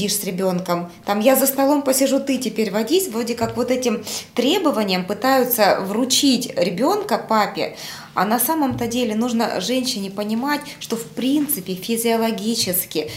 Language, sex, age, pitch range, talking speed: Russian, female, 20-39, 200-250 Hz, 135 wpm